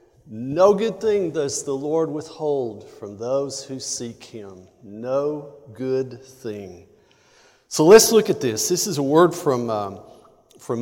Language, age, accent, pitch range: English, 50-69, American, 130-170 Hz